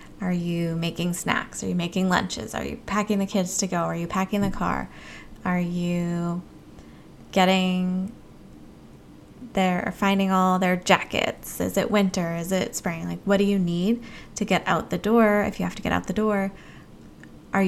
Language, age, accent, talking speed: English, 20-39, American, 180 wpm